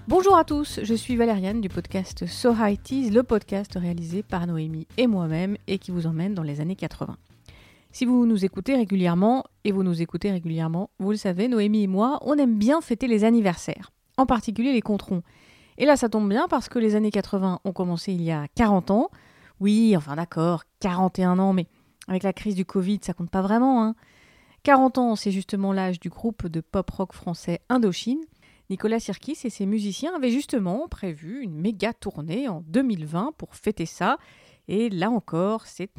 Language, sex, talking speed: French, female, 195 wpm